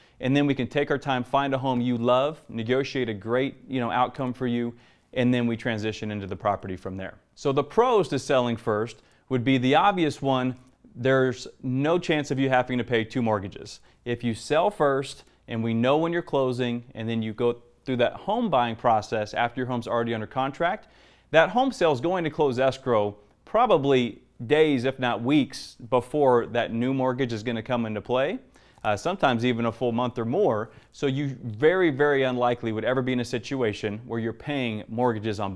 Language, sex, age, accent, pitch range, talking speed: English, male, 30-49, American, 115-135 Hz, 200 wpm